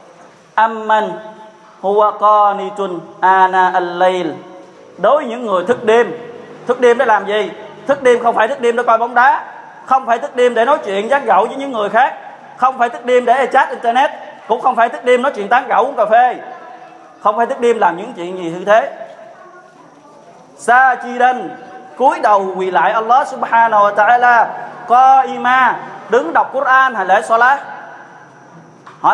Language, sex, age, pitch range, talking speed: Vietnamese, male, 20-39, 200-250 Hz, 175 wpm